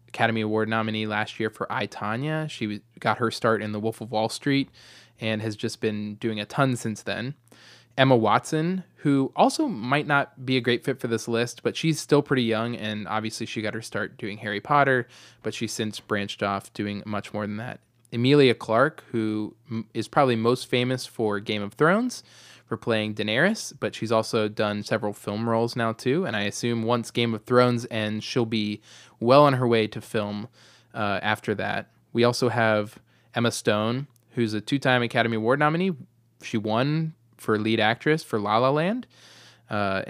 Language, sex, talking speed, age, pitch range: English, male, 190 wpm, 20-39, 105-125 Hz